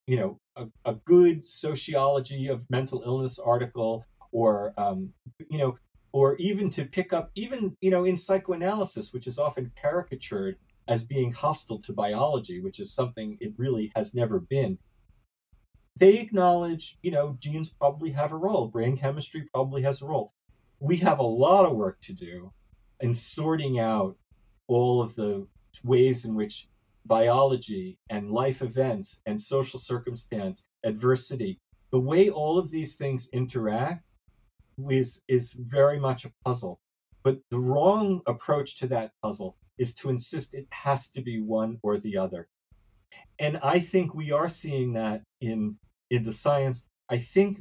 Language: English